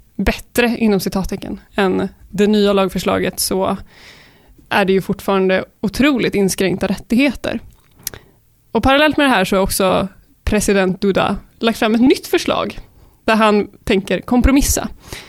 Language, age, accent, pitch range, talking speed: Swedish, 20-39, native, 195-235 Hz, 135 wpm